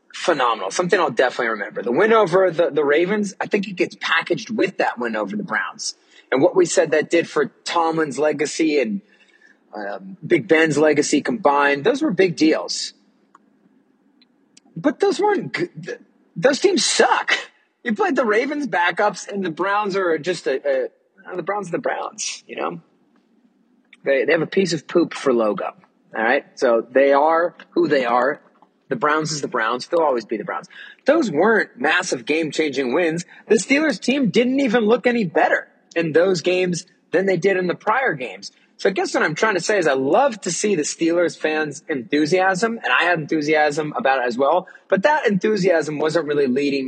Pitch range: 155-240 Hz